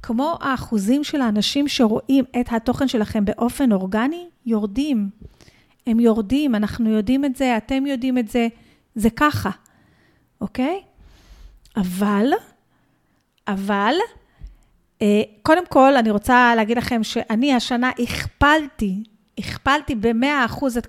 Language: Hebrew